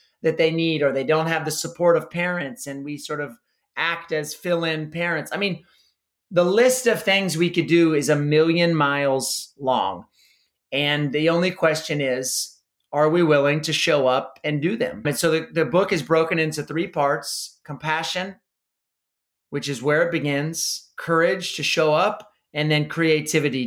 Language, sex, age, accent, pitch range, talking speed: English, male, 30-49, American, 150-170 Hz, 175 wpm